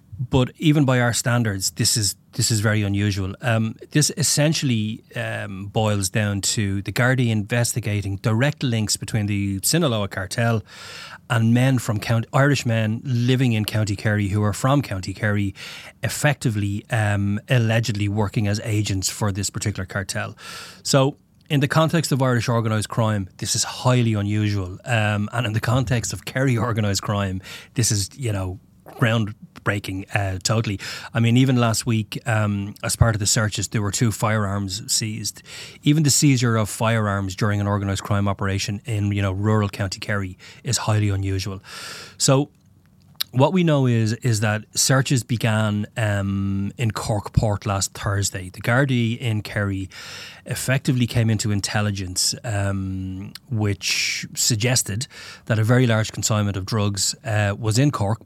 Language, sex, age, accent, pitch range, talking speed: English, male, 20-39, Irish, 100-125 Hz, 155 wpm